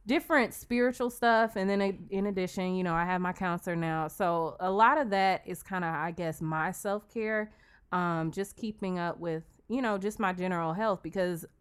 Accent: American